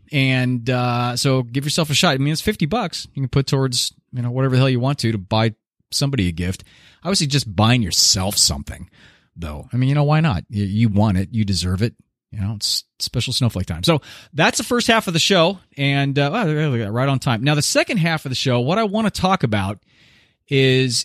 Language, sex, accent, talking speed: English, male, American, 230 wpm